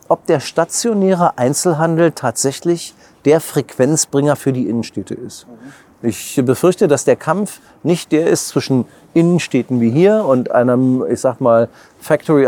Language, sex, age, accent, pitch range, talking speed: German, male, 40-59, German, 135-200 Hz, 140 wpm